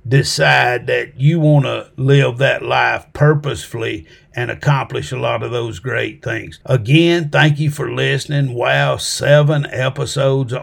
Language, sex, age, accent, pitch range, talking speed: English, male, 50-69, American, 125-145 Hz, 140 wpm